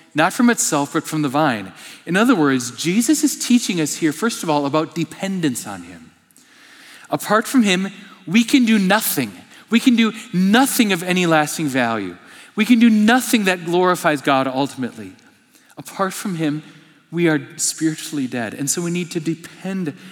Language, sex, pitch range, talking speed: English, male, 135-185 Hz, 175 wpm